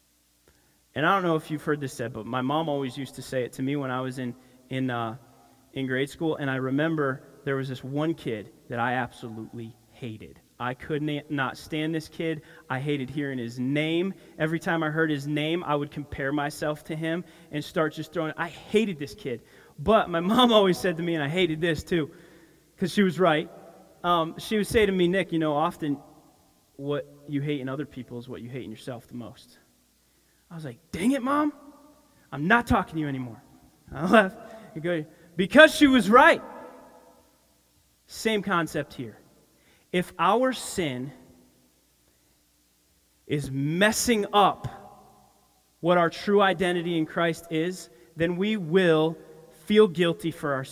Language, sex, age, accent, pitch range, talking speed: English, male, 30-49, American, 130-175 Hz, 180 wpm